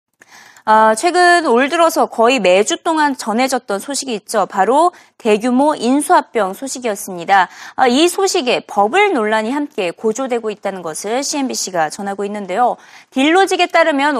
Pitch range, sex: 220-320 Hz, female